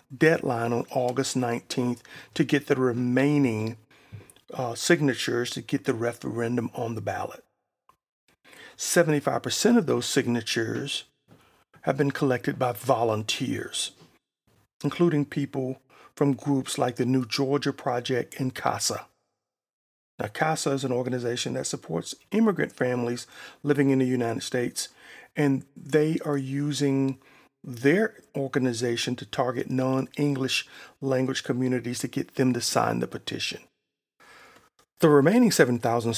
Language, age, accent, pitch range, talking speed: English, 40-59, American, 120-145 Hz, 120 wpm